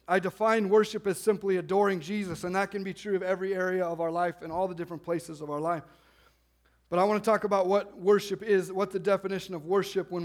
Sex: male